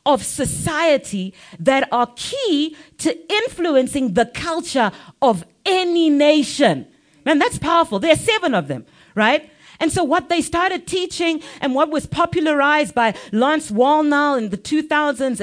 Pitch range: 230-320 Hz